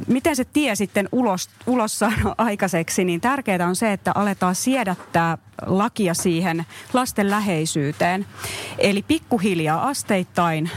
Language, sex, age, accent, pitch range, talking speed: Finnish, female, 30-49, native, 165-215 Hz, 115 wpm